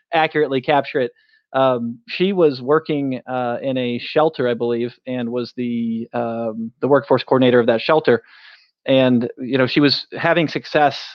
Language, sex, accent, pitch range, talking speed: English, male, American, 125-145 Hz, 160 wpm